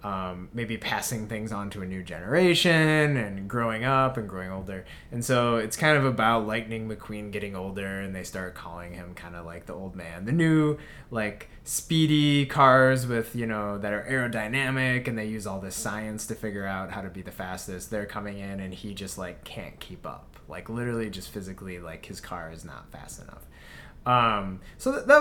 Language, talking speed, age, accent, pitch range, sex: English, 200 wpm, 20-39, American, 95-130 Hz, male